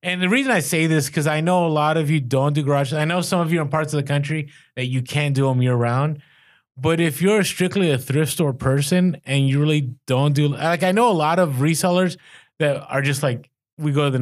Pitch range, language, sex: 130-165 Hz, English, male